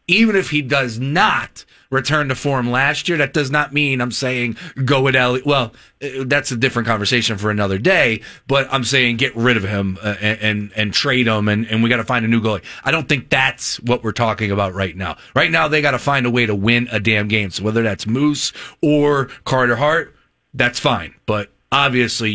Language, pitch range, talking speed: English, 110-145 Hz, 220 wpm